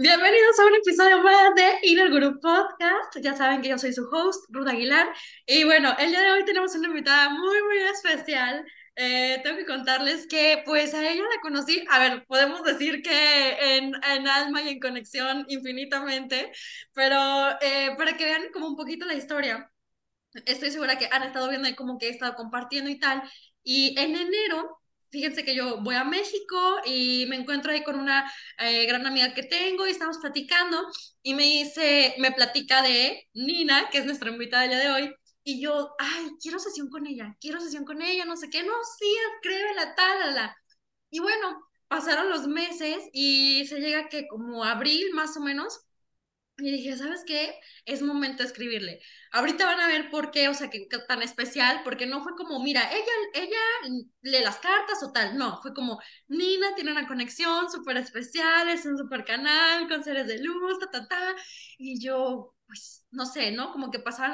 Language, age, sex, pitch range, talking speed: Spanish, 20-39, female, 260-335 Hz, 190 wpm